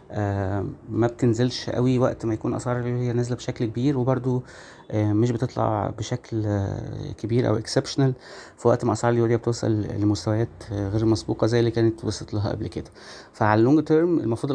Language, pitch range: Arabic, 110-120 Hz